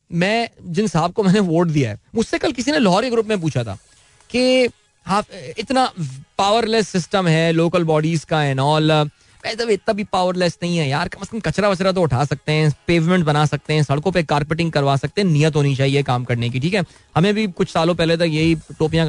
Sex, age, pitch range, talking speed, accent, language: male, 20-39, 155-215 Hz, 220 wpm, native, Hindi